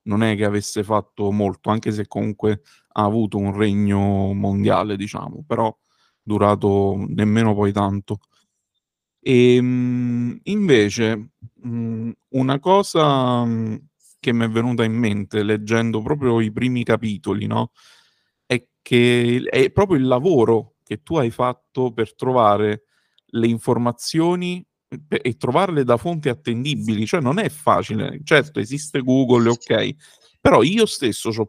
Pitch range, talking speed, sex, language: 110-135 Hz, 135 wpm, male, Italian